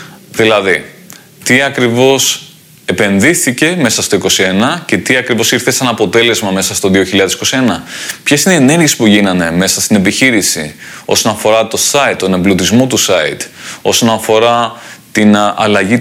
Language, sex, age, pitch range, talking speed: Greek, male, 20-39, 110-135 Hz, 140 wpm